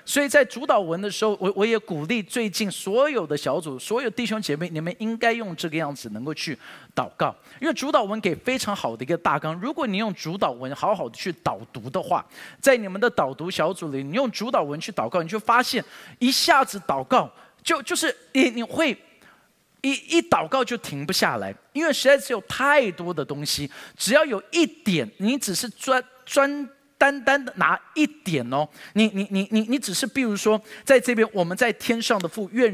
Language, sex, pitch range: Chinese, male, 175-255 Hz